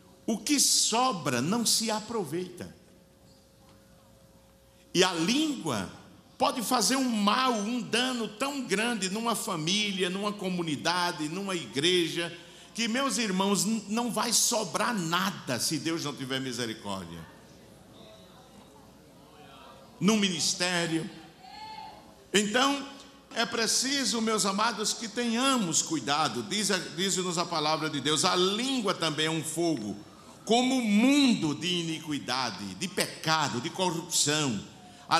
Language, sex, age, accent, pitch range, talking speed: Portuguese, male, 60-79, Brazilian, 145-225 Hz, 115 wpm